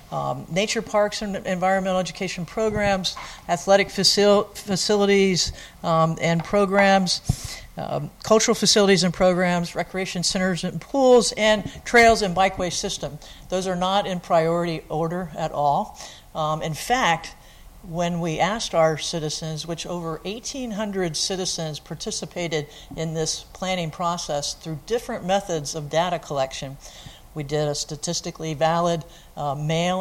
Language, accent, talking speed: English, American, 130 wpm